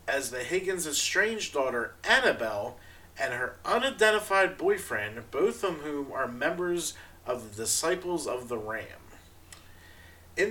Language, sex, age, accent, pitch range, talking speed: English, male, 40-59, American, 105-170 Hz, 125 wpm